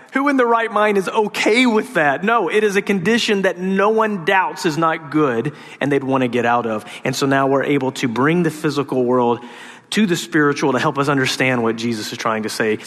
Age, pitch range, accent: 40-59, 110-135 Hz, American